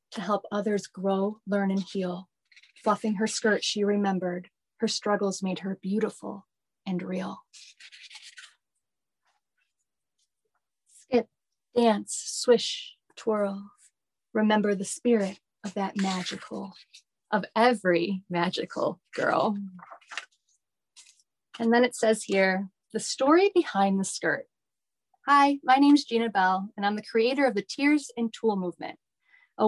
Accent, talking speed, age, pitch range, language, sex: American, 120 wpm, 30-49, 190-235 Hz, English, female